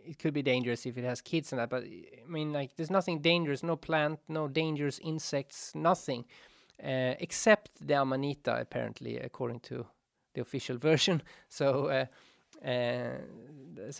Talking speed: 150 wpm